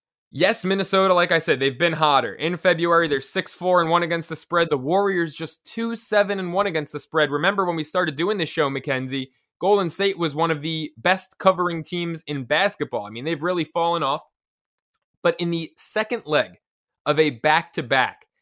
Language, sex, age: English, male, 20-39